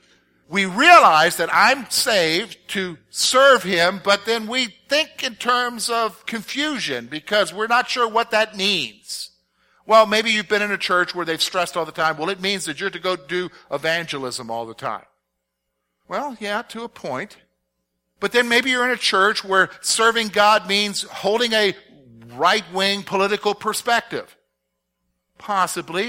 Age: 50-69